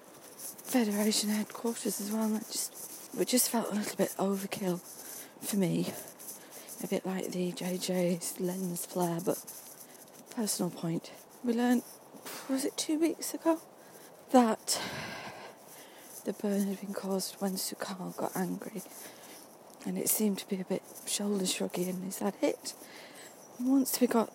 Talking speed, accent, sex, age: 145 wpm, British, female, 40-59